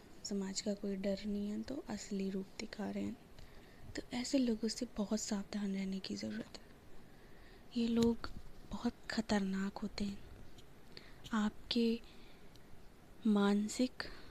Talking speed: 125 wpm